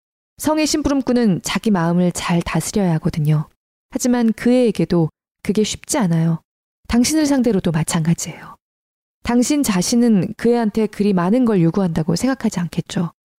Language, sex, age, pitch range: Korean, female, 20-39, 170-240 Hz